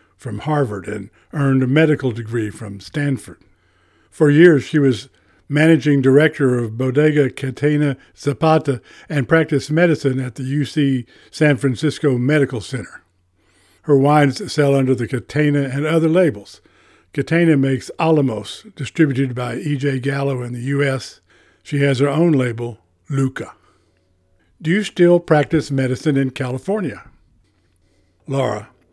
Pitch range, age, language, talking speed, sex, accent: 120-150 Hz, 60-79, English, 130 wpm, male, American